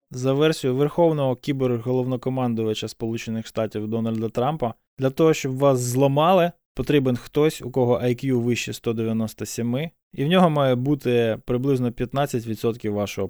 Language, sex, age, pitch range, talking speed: Ukrainian, male, 20-39, 115-135 Hz, 125 wpm